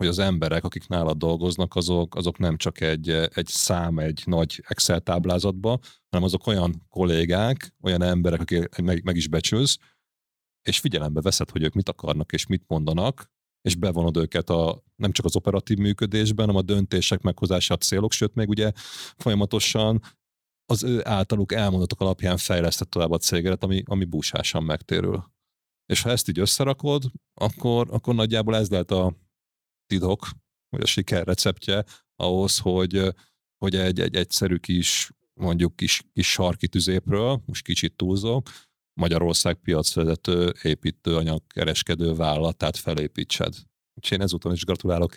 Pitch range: 85-100 Hz